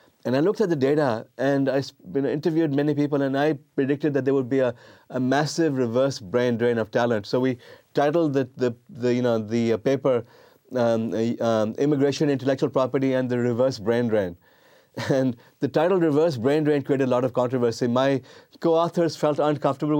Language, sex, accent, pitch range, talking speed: English, male, Indian, 125-145 Hz, 185 wpm